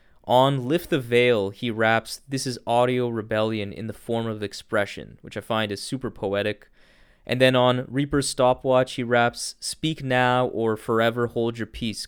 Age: 20-39